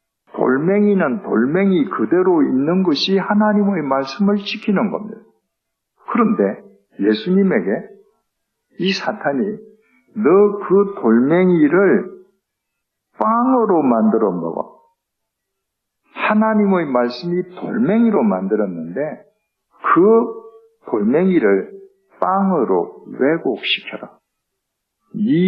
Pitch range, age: 145-220 Hz, 60-79